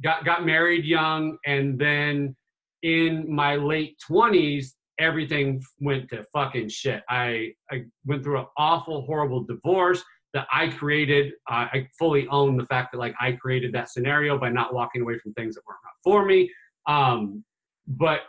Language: English